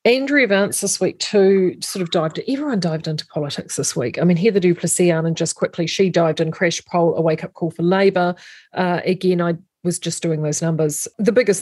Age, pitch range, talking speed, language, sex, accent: 40-59, 165-195 Hz, 210 wpm, English, female, Australian